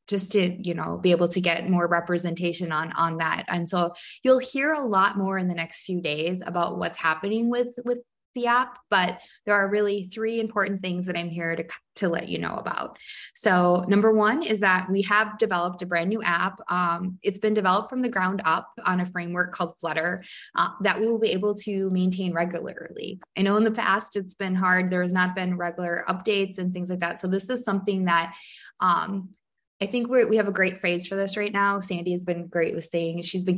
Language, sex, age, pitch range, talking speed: English, female, 20-39, 175-210 Hz, 225 wpm